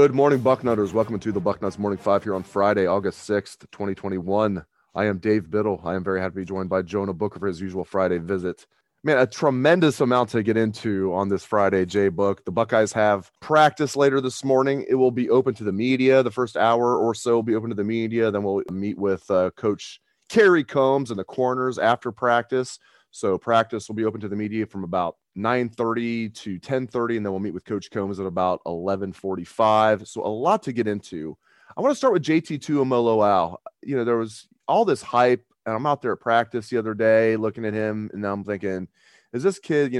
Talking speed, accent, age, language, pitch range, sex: 225 wpm, American, 30-49, English, 100-130 Hz, male